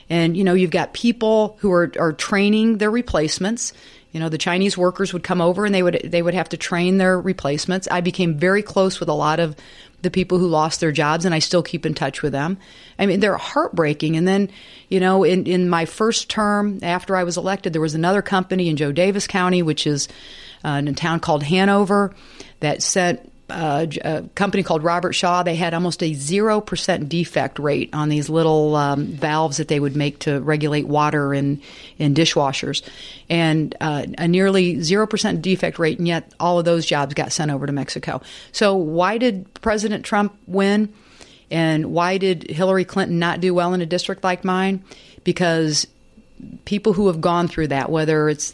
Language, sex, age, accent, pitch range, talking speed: English, female, 40-59, American, 155-190 Hz, 200 wpm